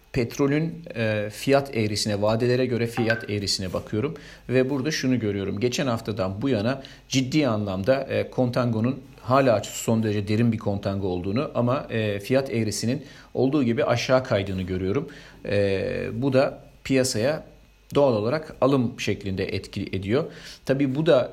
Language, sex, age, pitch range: Turkish, male, 40-59, 105-130 Hz